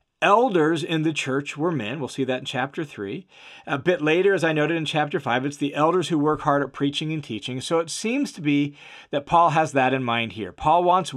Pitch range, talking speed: 140-185 Hz, 240 wpm